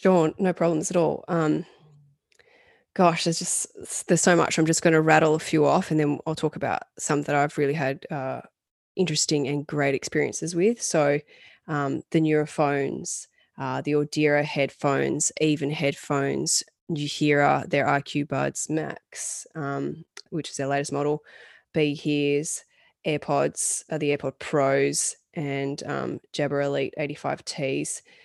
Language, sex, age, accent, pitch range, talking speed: English, female, 20-39, Australian, 140-160 Hz, 150 wpm